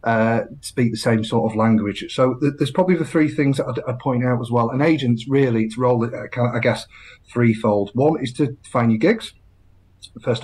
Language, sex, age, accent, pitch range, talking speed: English, male, 30-49, British, 110-150 Hz, 205 wpm